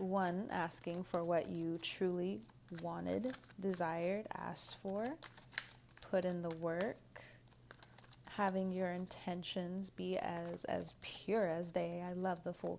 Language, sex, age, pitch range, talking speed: English, female, 20-39, 170-195 Hz, 125 wpm